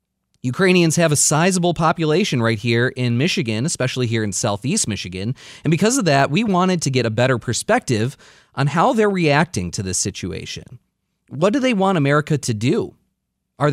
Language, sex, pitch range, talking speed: English, male, 110-155 Hz, 175 wpm